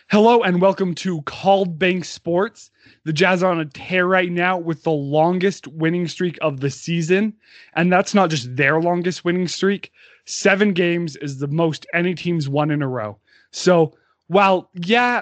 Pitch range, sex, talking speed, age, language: 150-185 Hz, male, 180 wpm, 20-39, English